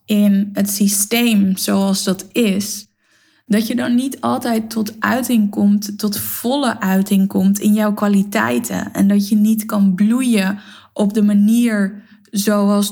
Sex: female